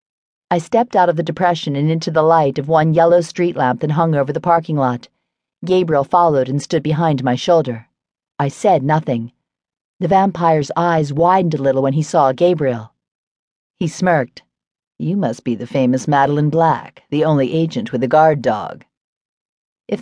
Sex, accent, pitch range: female, American, 135-175 Hz